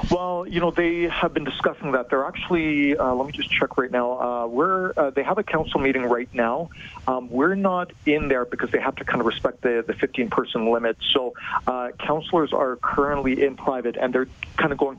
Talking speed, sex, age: 225 wpm, male, 40-59